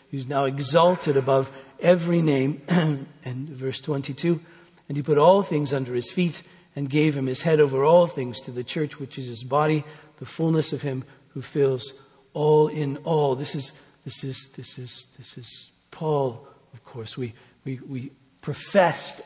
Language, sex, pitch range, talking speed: English, male, 130-150 Hz, 175 wpm